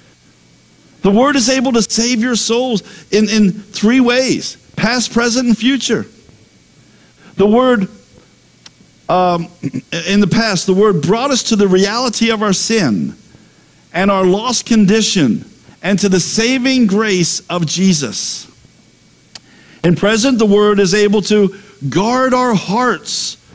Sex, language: male, English